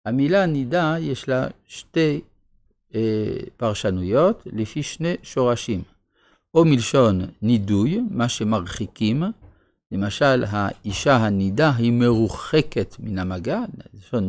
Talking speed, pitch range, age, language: 90 wpm, 105-150 Hz, 50-69, Hebrew